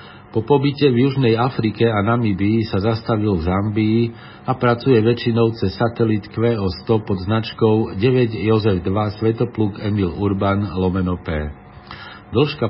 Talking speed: 130 wpm